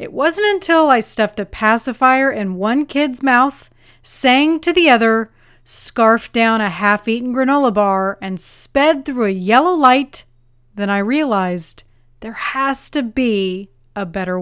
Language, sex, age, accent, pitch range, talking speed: English, female, 30-49, American, 195-250 Hz, 150 wpm